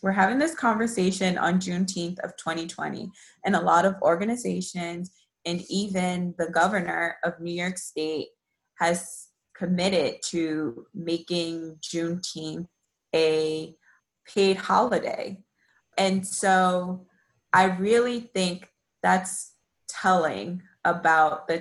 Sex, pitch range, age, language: female, 165-185 Hz, 20-39, English